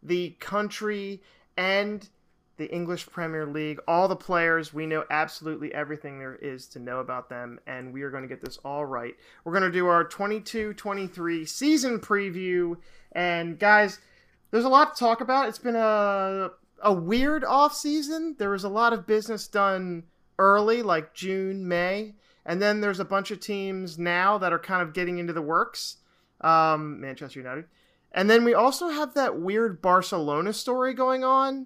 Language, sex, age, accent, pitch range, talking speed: English, male, 30-49, American, 165-220 Hz, 175 wpm